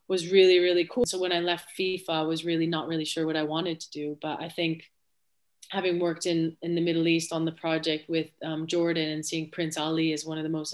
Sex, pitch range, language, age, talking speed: female, 160-180 Hz, English, 30-49, 250 wpm